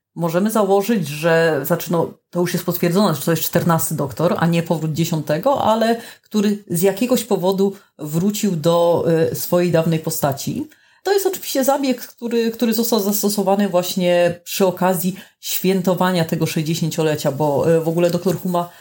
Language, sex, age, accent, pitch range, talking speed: Polish, female, 30-49, native, 155-185 Hz, 145 wpm